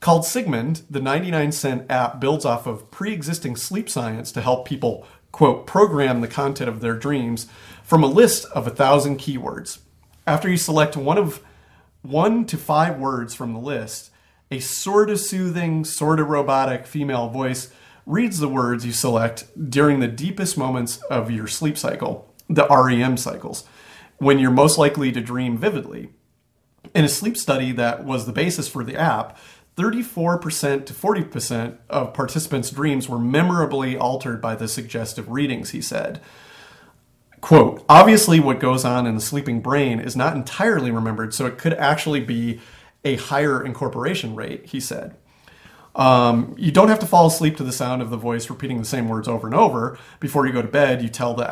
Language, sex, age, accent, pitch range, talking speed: English, male, 40-59, American, 120-155 Hz, 175 wpm